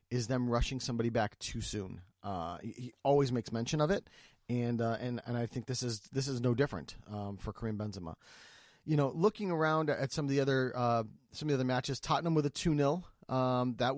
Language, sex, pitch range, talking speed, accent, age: English, male, 120-155 Hz, 230 wpm, American, 30-49